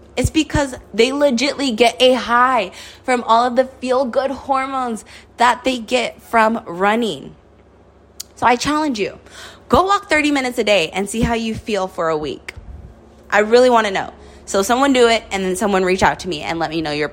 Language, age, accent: English, 20-39, American